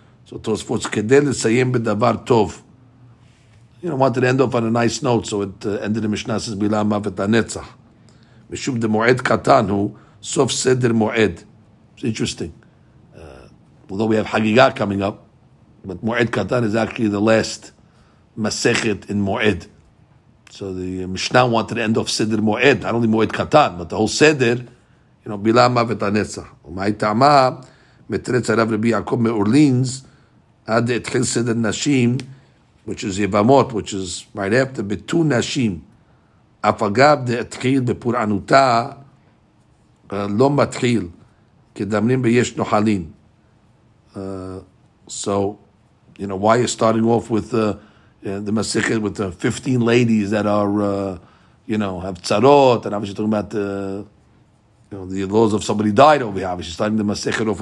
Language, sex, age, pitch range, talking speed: English, male, 60-79, 105-120 Hz, 150 wpm